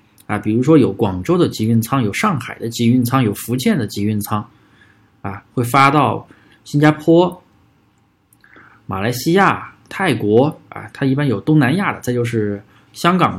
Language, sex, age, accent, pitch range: Chinese, male, 20-39, native, 110-150 Hz